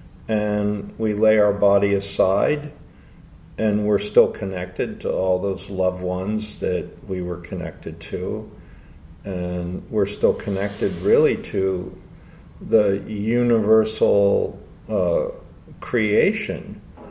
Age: 50-69